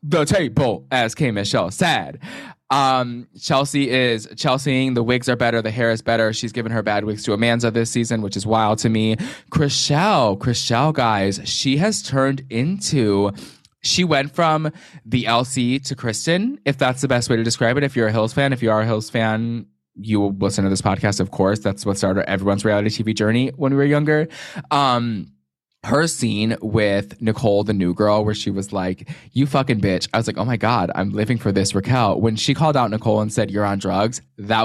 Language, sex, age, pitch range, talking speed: English, male, 20-39, 100-130 Hz, 210 wpm